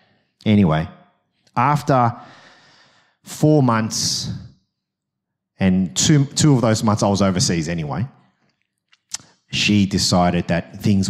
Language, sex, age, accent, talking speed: English, male, 30-49, Australian, 95 wpm